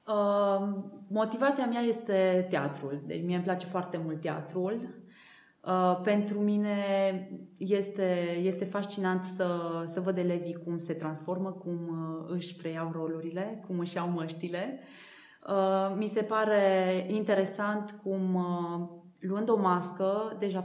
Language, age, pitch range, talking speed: Romanian, 20-39, 175-200 Hz, 115 wpm